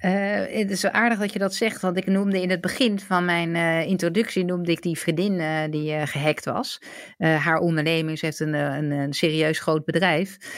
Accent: Dutch